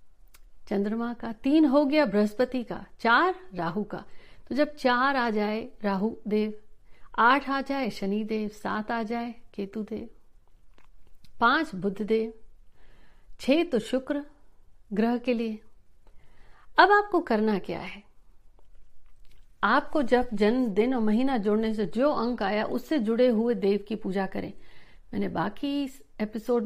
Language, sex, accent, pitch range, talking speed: Hindi, female, native, 200-245 Hz, 140 wpm